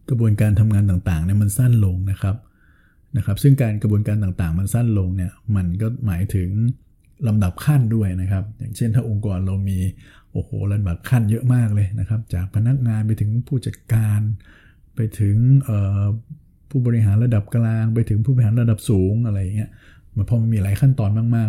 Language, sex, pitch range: Thai, male, 100-120 Hz